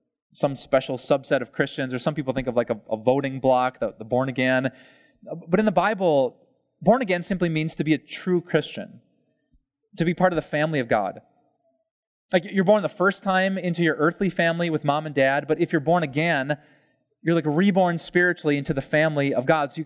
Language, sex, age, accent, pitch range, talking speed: English, male, 20-39, American, 145-185 Hz, 210 wpm